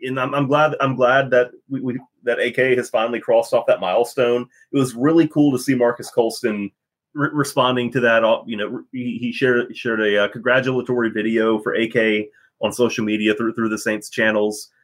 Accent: American